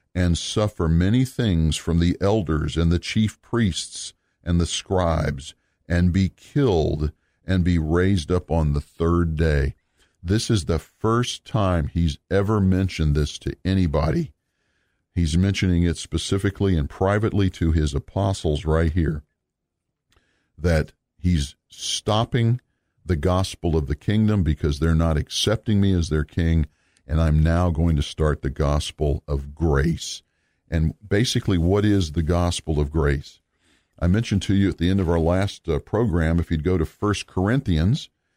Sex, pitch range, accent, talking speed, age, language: male, 80-95 Hz, American, 155 wpm, 50-69, English